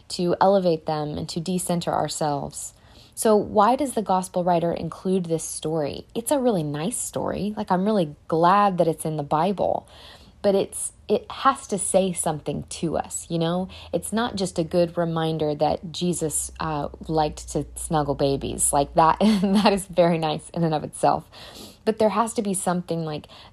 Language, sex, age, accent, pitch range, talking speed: English, female, 20-39, American, 150-190 Hz, 180 wpm